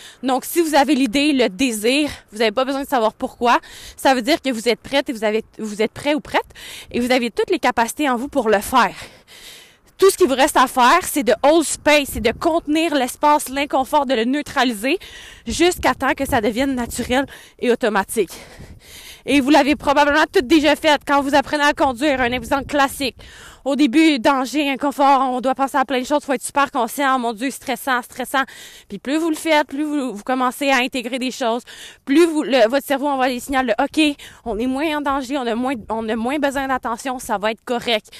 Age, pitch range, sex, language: 20-39, 240-290 Hz, female, French